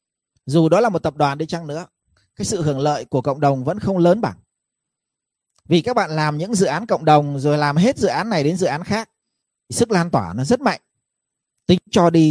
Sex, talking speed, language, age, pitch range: male, 235 wpm, Vietnamese, 30-49, 140-190 Hz